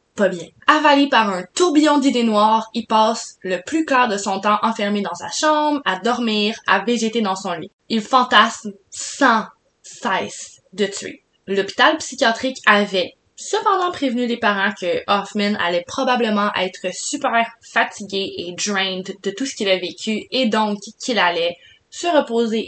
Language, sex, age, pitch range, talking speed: French, female, 20-39, 205-265 Hz, 160 wpm